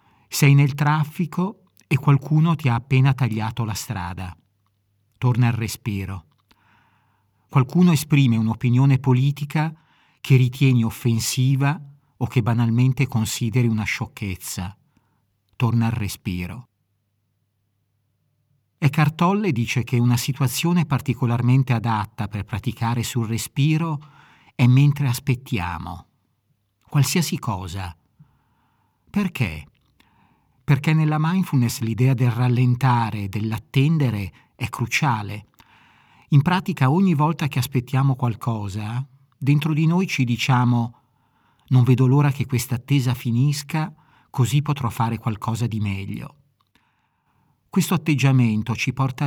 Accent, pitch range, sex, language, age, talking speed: native, 110-140 Hz, male, Italian, 50-69, 105 wpm